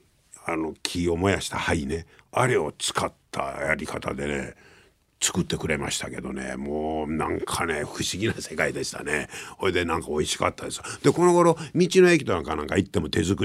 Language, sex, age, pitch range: Japanese, male, 50-69, 90-125 Hz